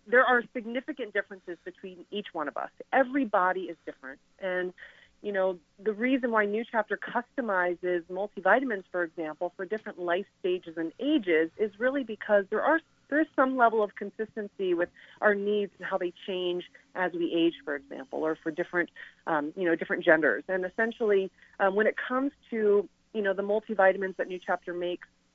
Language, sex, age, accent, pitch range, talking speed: English, female, 30-49, American, 180-220 Hz, 180 wpm